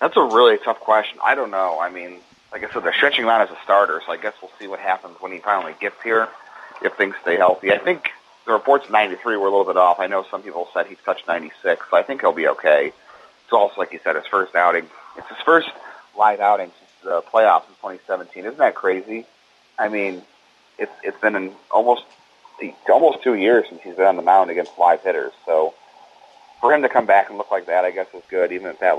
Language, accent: English, American